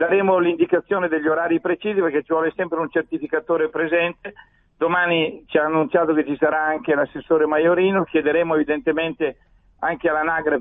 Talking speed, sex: 145 wpm, male